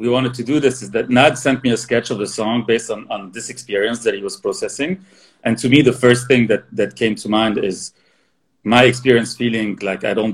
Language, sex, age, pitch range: English, male, 30-49, 105-125 Hz